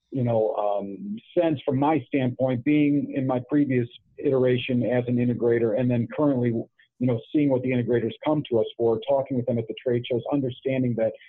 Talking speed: 195 wpm